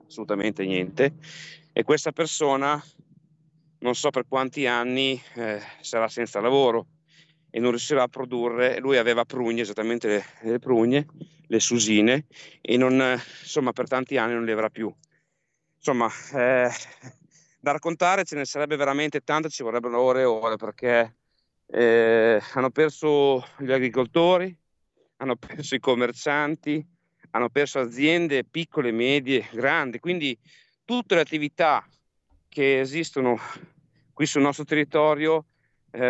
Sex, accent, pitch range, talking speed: male, native, 125-155 Hz, 135 wpm